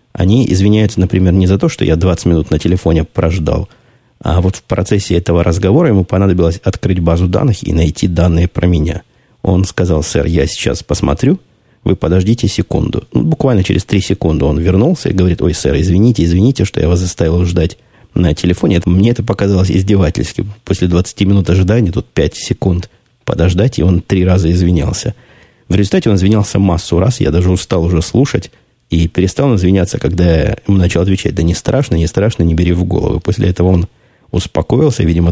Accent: native